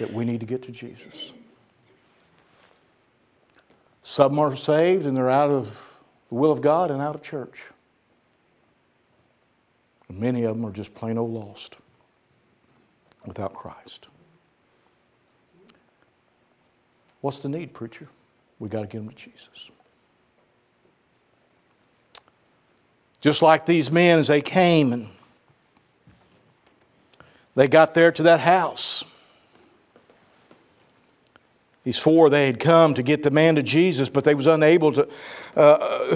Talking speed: 125 wpm